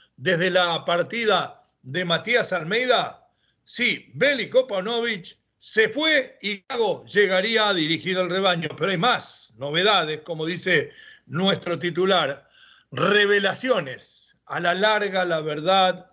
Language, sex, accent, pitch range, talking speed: Spanish, male, Argentinian, 175-230 Hz, 120 wpm